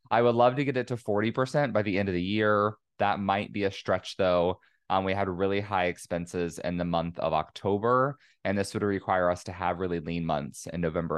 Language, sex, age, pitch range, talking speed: English, male, 20-39, 95-125 Hz, 230 wpm